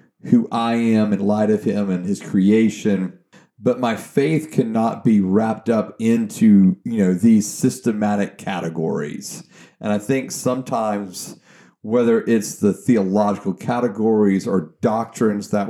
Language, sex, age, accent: English, male, 40-59, American